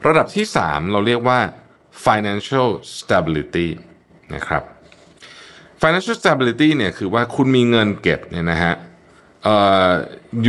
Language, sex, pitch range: Thai, male, 85-125 Hz